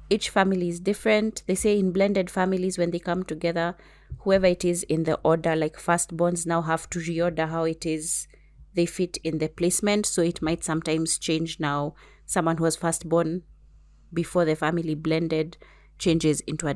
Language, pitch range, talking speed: English, 160-185 Hz, 185 wpm